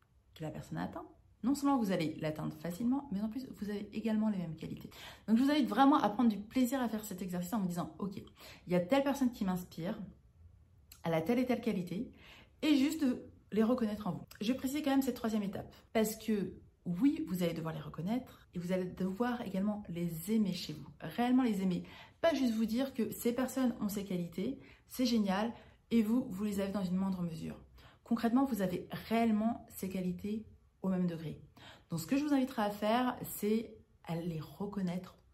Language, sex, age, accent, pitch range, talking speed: French, female, 30-49, French, 180-240 Hz, 215 wpm